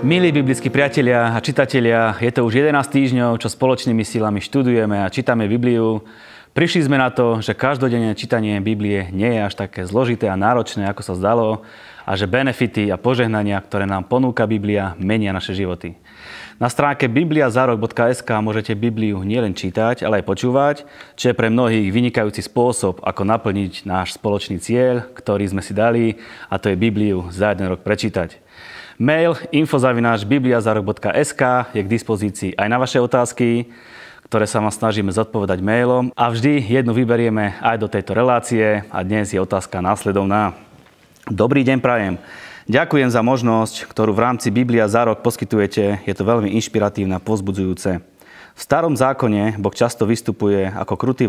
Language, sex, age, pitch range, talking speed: Slovak, male, 30-49, 100-125 Hz, 155 wpm